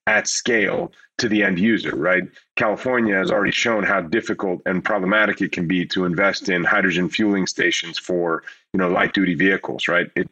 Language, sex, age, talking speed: English, male, 30-49, 185 wpm